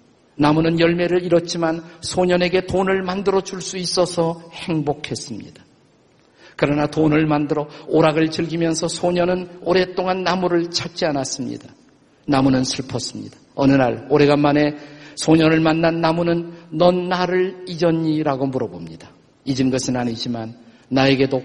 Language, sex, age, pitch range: Korean, male, 50-69, 145-175 Hz